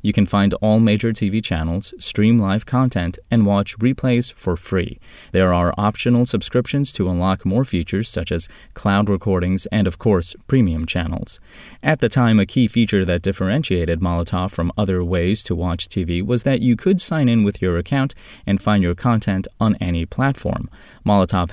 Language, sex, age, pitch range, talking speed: English, male, 20-39, 90-110 Hz, 180 wpm